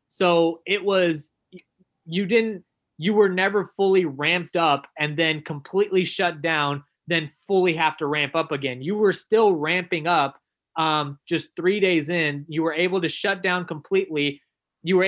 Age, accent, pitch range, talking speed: 20-39, American, 150-185 Hz, 165 wpm